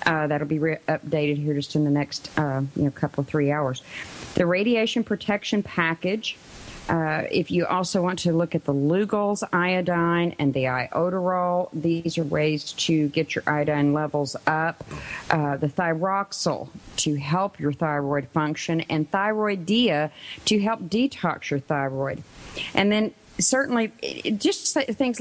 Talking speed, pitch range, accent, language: 155 wpm, 155-200 Hz, American, English